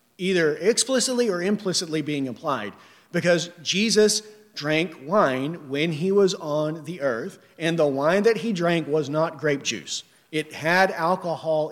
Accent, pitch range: American, 145-190 Hz